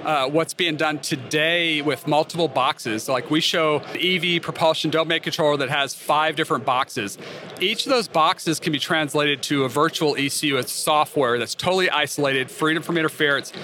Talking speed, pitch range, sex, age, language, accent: 180 wpm, 145-165 Hz, male, 40-59, English, American